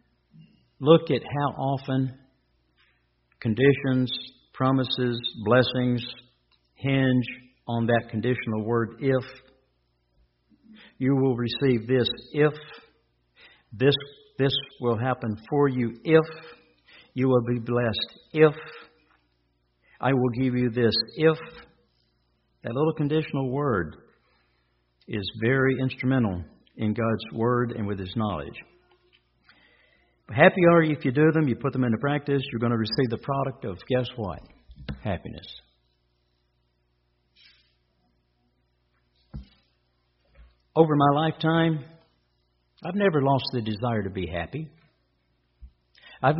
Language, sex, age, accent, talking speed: English, male, 60-79, American, 110 wpm